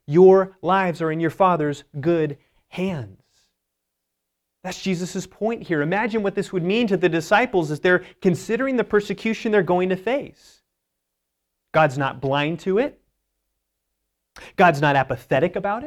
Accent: American